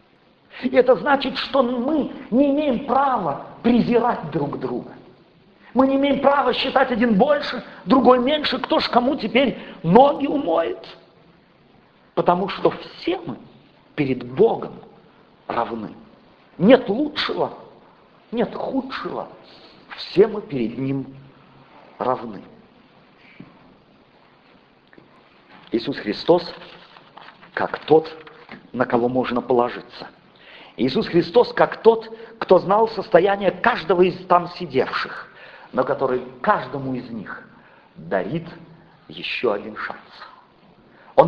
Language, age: Russian, 50-69